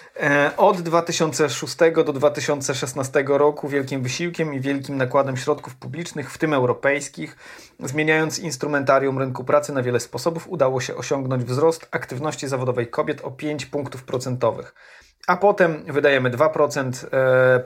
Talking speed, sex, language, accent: 125 wpm, male, Polish, native